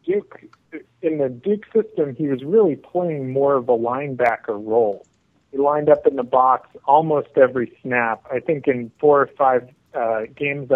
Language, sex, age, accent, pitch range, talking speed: English, male, 40-59, American, 120-145 Hz, 175 wpm